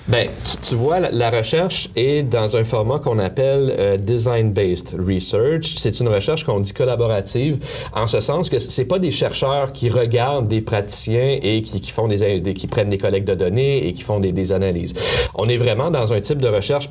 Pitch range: 95-125 Hz